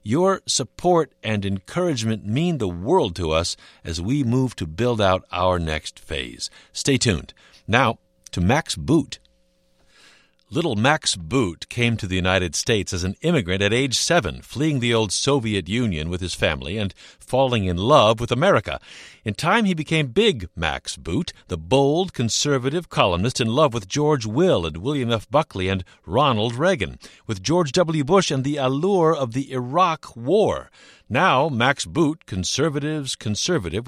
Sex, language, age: male, English, 50-69